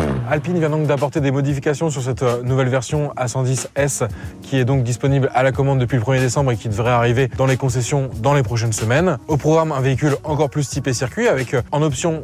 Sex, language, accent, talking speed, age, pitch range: male, French, French, 215 wpm, 20-39, 130-155 Hz